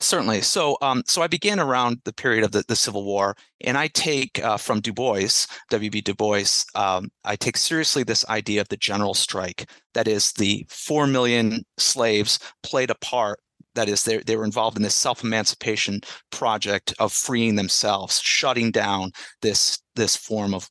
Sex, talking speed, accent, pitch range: male, 180 wpm, American, 105-130 Hz